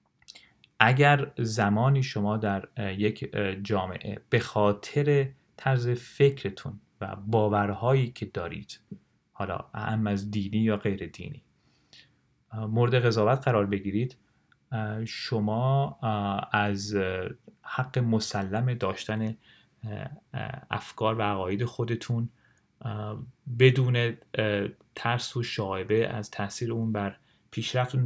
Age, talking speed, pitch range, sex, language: 30-49, 90 wpm, 105-130 Hz, male, Persian